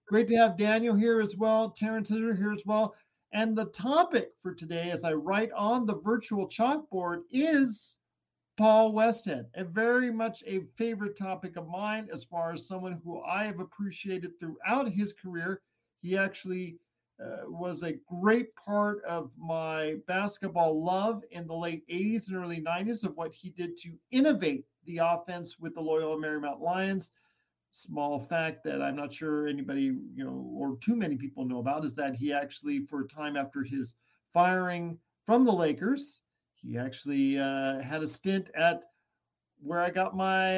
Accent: American